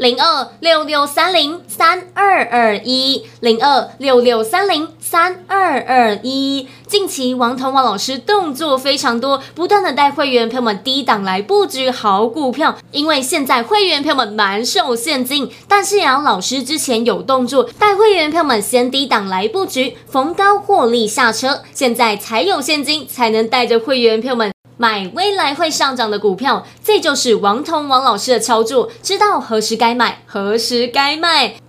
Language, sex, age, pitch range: Chinese, female, 20-39, 235-330 Hz